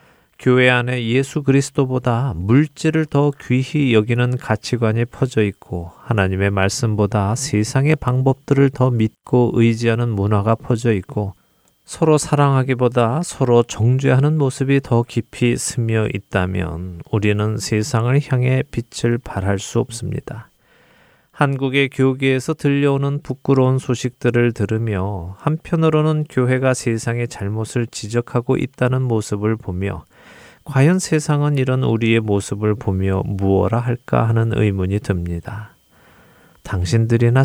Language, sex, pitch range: Korean, male, 105-135 Hz